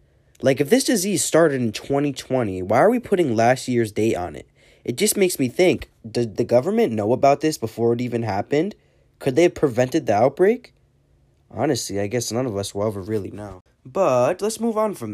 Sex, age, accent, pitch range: male, 20-39, American, 115-170 Hz